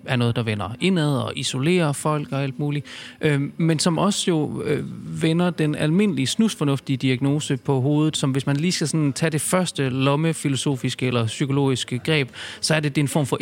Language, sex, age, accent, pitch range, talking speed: Danish, male, 30-49, native, 130-165 Hz, 190 wpm